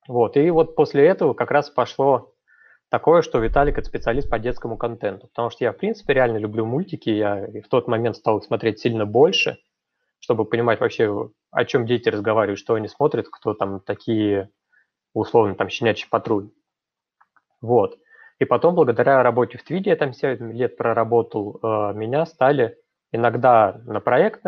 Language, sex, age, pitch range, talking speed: Russian, male, 20-39, 110-140 Hz, 165 wpm